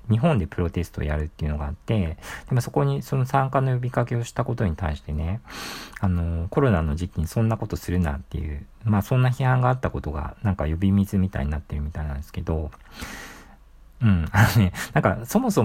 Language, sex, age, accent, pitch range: Japanese, male, 50-69, native, 85-125 Hz